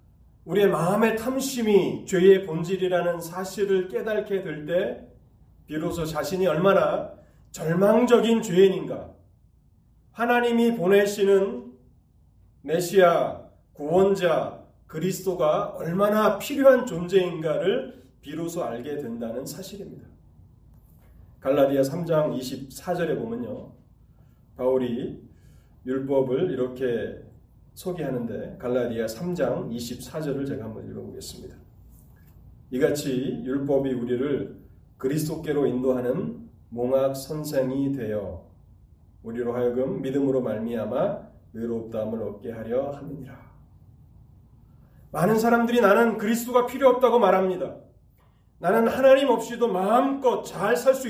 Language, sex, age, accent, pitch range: Korean, male, 30-49, native, 130-195 Hz